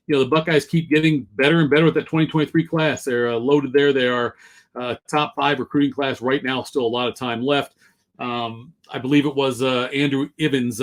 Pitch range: 125-150 Hz